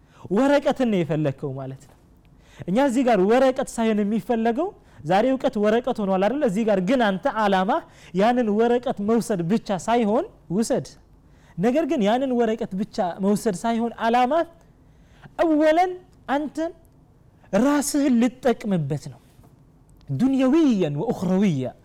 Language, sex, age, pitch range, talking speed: Amharic, male, 30-49, 180-280 Hz, 85 wpm